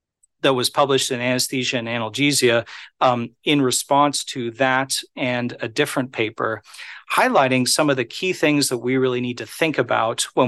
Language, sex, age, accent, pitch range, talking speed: English, male, 40-59, American, 120-145 Hz, 170 wpm